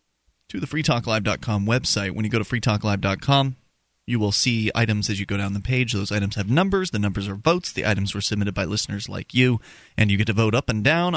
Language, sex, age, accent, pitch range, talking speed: English, male, 30-49, American, 105-135 Hz, 230 wpm